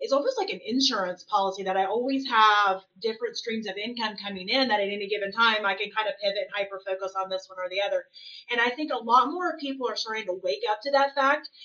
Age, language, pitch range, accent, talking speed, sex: 30-49, English, 195-270 Hz, American, 260 wpm, female